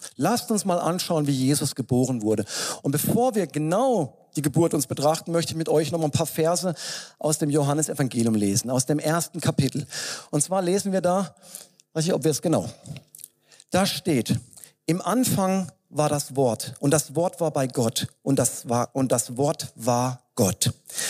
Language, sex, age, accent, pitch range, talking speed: German, male, 40-59, German, 135-185 Hz, 185 wpm